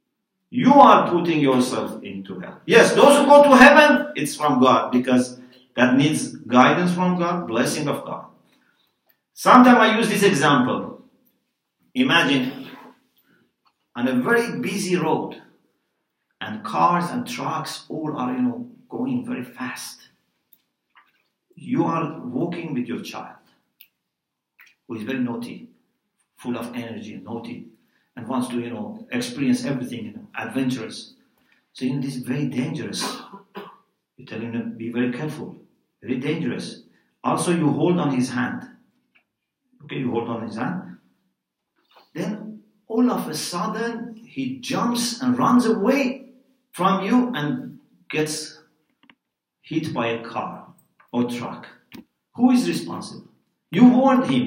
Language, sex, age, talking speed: English, male, 50-69, 135 wpm